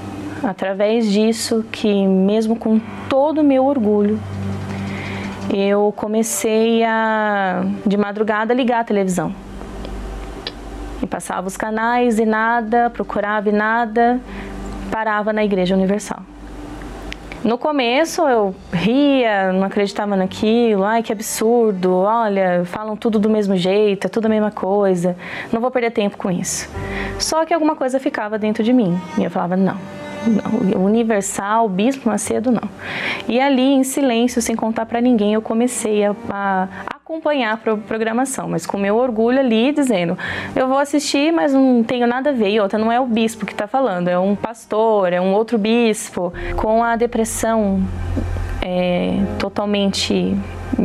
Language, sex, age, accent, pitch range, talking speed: Portuguese, female, 20-39, Brazilian, 195-230 Hz, 150 wpm